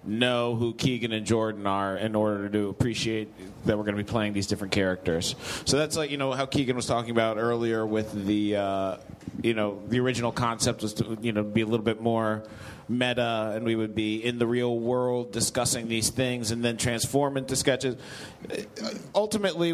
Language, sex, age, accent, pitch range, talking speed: English, male, 30-49, American, 110-135 Hz, 205 wpm